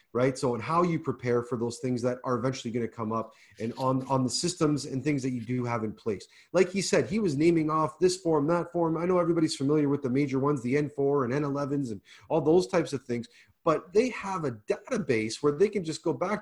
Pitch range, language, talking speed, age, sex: 120-150 Hz, English, 250 wpm, 30-49, male